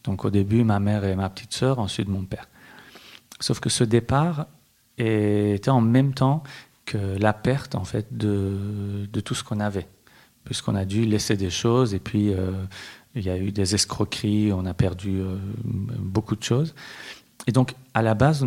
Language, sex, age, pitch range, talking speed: French, male, 40-59, 100-125 Hz, 190 wpm